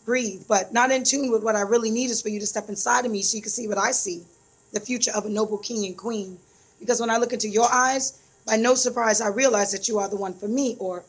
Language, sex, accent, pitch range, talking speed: English, female, American, 205-240 Hz, 285 wpm